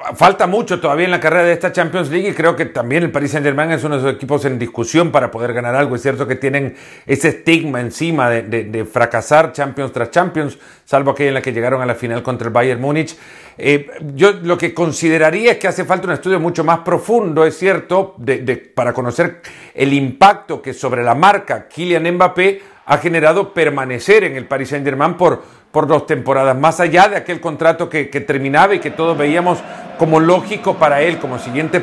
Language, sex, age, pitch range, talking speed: Spanish, male, 50-69, 140-175 Hz, 205 wpm